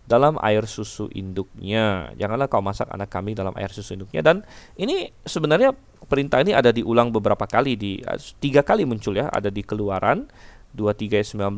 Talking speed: 165 wpm